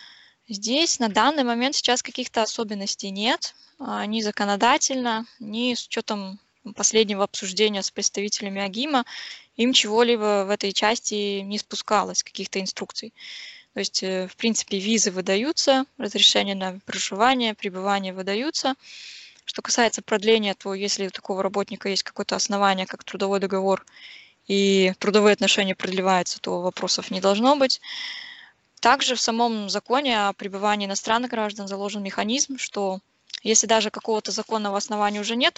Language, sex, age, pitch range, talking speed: English, female, 10-29, 200-240 Hz, 135 wpm